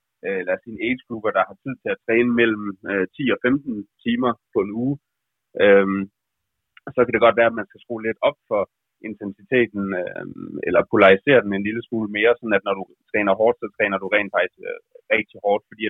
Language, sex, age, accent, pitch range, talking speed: Danish, male, 30-49, native, 100-120 Hz, 195 wpm